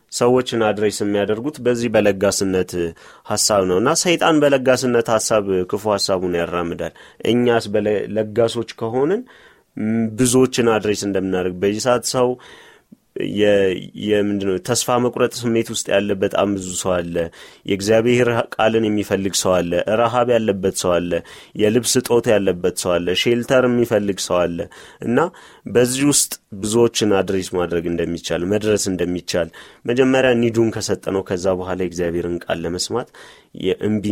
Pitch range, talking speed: 95-115 Hz, 120 wpm